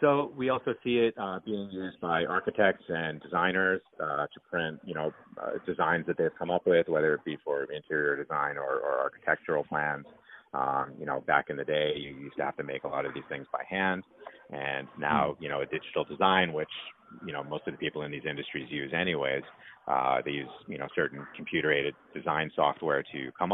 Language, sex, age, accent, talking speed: English, male, 30-49, American, 215 wpm